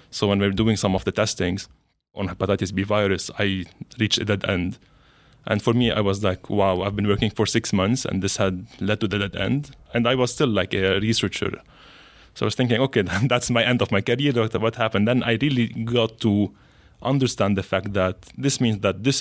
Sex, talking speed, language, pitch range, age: male, 225 wpm, English, 95-115 Hz, 20-39